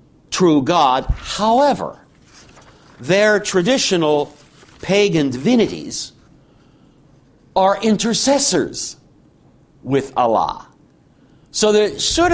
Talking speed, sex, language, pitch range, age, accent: 70 wpm, male, English, 145-185 Hz, 60-79, American